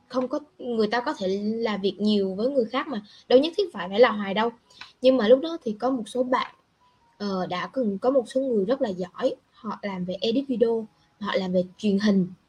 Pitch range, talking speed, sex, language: 190-260 Hz, 245 wpm, female, Vietnamese